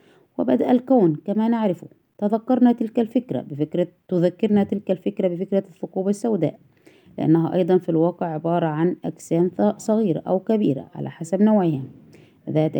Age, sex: 20-39, female